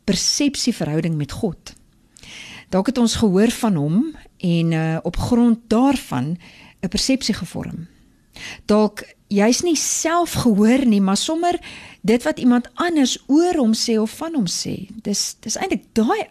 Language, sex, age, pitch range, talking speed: English, female, 50-69, 185-255 Hz, 145 wpm